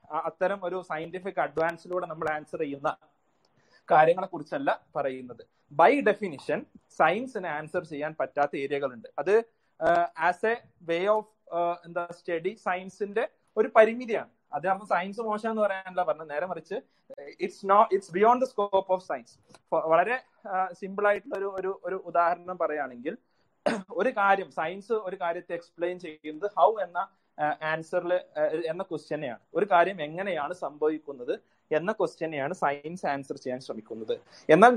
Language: Malayalam